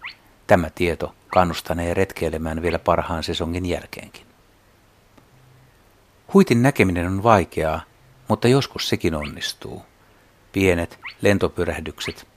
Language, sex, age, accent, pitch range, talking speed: Finnish, male, 60-79, native, 85-110 Hz, 85 wpm